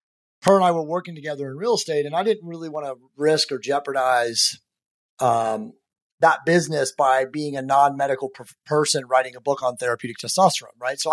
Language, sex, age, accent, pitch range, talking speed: English, male, 30-49, American, 130-160 Hz, 185 wpm